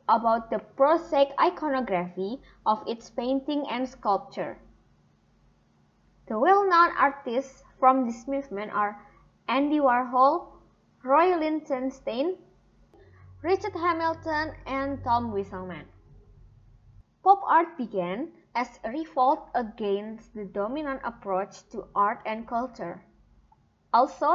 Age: 20-39